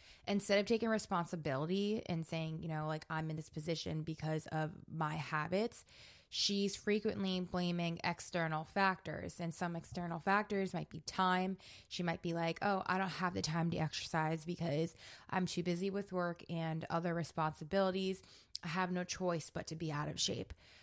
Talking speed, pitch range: 175 wpm, 160-185 Hz